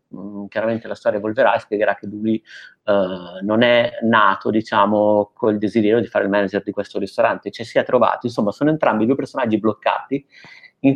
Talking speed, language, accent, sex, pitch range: 185 wpm, Italian, native, male, 105-120 Hz